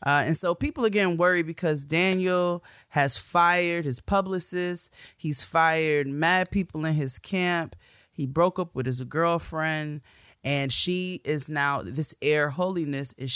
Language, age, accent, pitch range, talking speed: English, 20-39, American, 120-150 Hz, 150 wpm